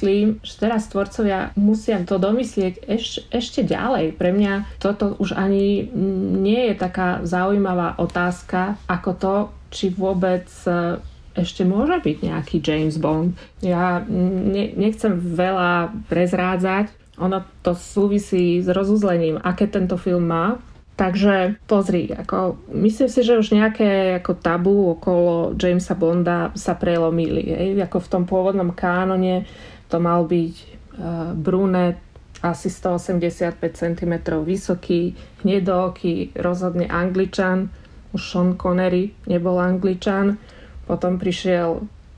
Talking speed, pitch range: 115 wpm, 175-200 Hz